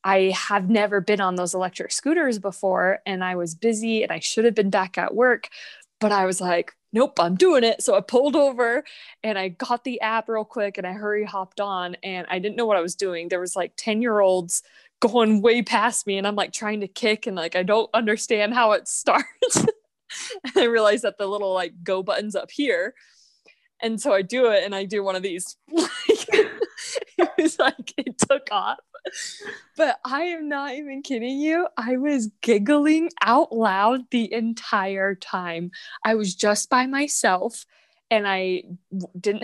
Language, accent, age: English, American, 20-39